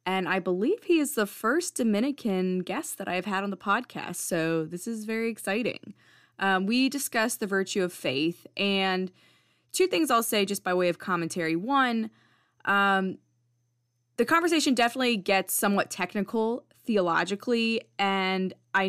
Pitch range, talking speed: 175-220 Hz, 155 wpm